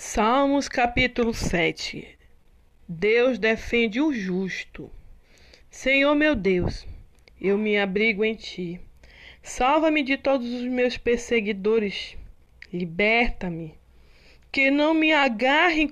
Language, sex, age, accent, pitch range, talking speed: Portuguese, female, 20-39, Brazilian, 205-275 Hz, 100 wpm